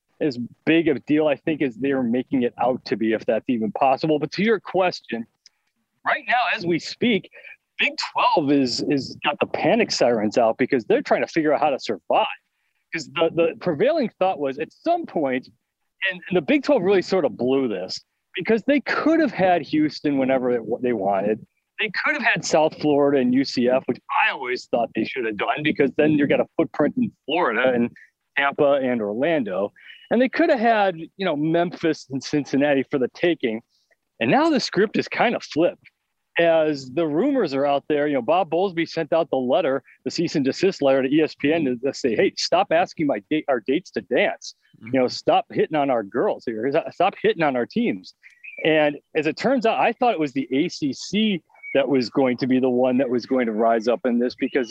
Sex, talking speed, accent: male, 215 wpm, American